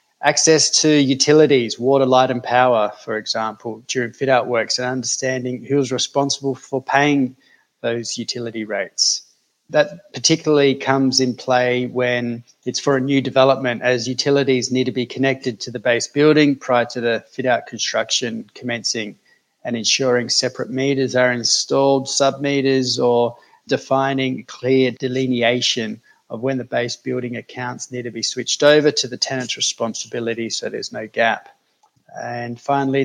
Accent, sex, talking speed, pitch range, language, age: Australian, male, 150 wpm, 120-135 Hz, English, 30-49